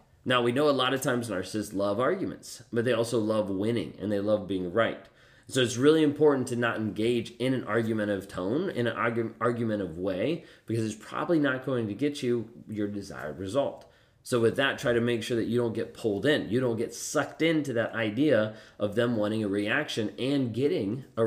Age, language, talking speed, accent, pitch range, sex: 30-49, English, 215 wpm, American, 105-125 Hz, male